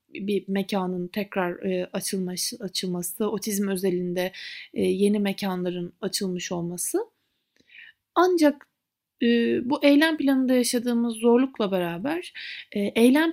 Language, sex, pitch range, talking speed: Turkish, female, 200-275 Hz, 105 wpm